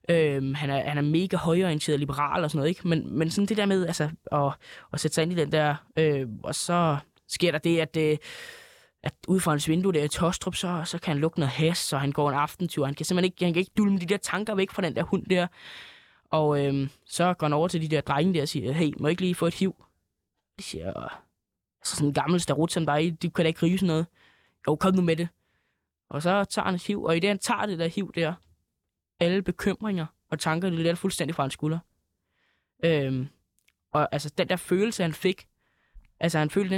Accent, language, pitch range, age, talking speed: native, Danish, 150-180 Hz, 20-39, 240 wpm